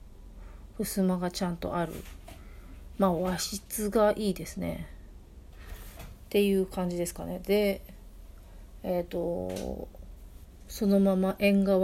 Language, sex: Japanese, female